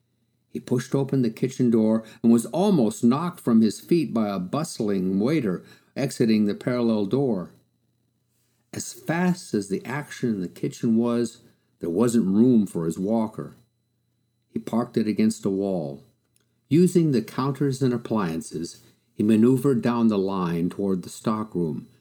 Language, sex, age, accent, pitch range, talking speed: English, male, 50-69, American, 105-130 Hz, 150 wpm